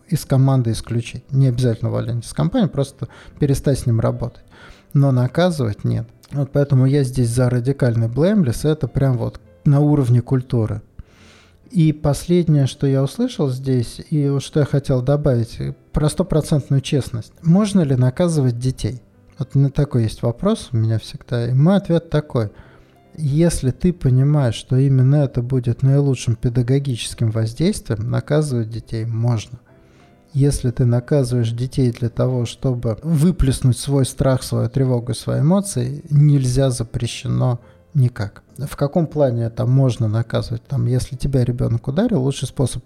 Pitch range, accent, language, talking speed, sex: 120-145 Hz, native, Russian, 145 wpm, male